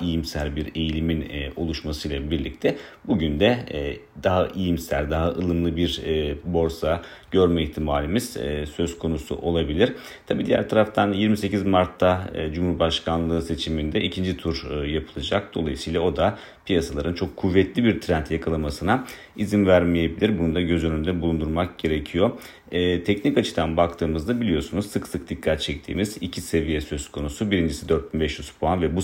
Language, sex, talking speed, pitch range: Turkish, male, 130 wpm, 80-90 Hz